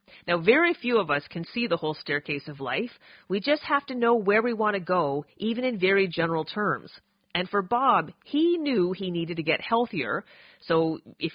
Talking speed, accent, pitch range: 205 wpm, American, 160-215 Hz